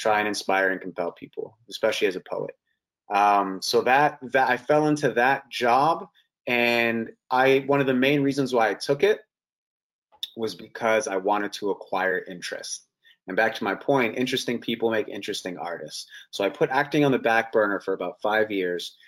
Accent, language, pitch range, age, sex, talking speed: American, English, 100-125 Hz, 30-49, male, 185 wpm